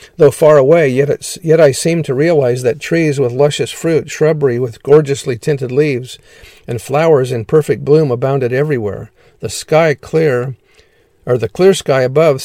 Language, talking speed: English, 165 wpm